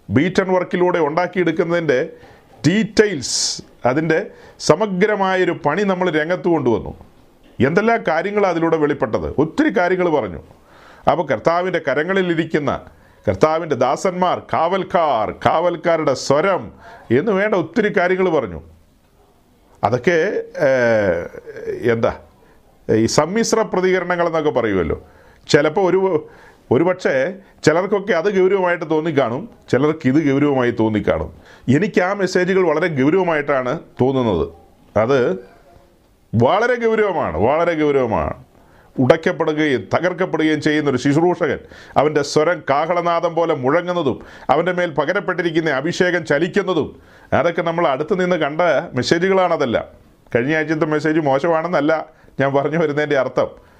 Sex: male